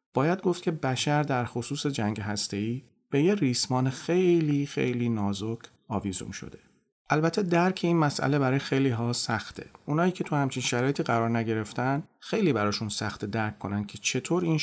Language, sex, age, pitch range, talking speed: Persian, male, 40-59, 105-140 Hz, 160 wpm